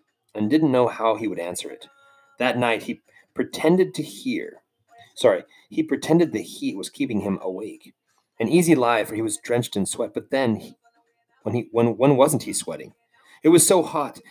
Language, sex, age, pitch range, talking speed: English, male, 30-49, 105-170 Hz, 195 wpm